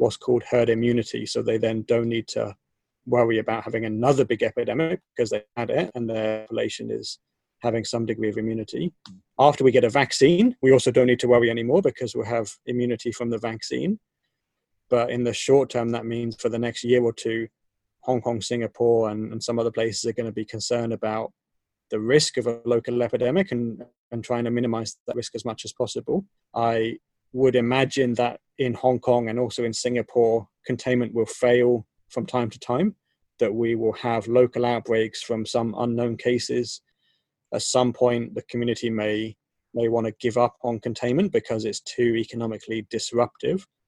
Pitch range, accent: 110-120 Hz, British